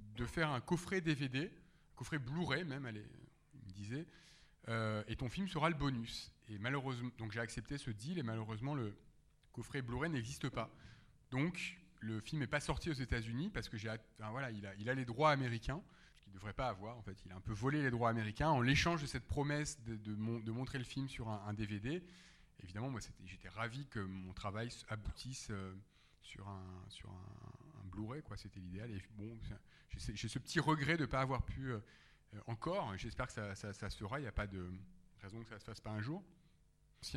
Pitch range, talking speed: 105-150 Hz, 225 wpm